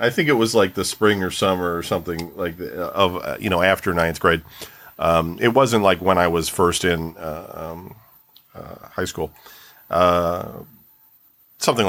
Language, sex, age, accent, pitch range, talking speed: English, male, 40-59, American, 85-110 Hz, 175 wpm